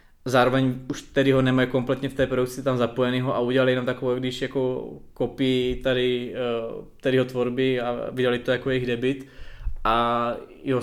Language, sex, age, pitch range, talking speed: Czech, male, 20-39, 125-130 Hz, 160 wpm